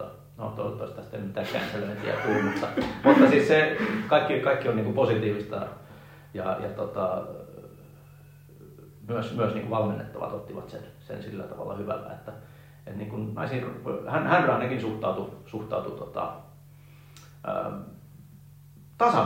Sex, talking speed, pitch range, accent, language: male, 120 wpm, 105-140 Hz, native, Finnish